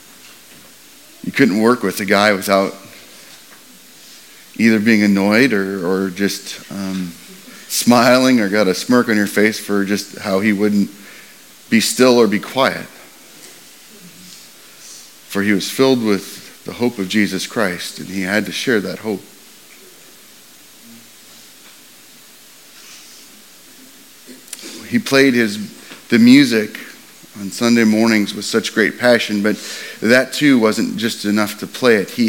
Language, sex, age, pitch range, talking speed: English, male, 30-49, 100-115 Hz, 130 wpm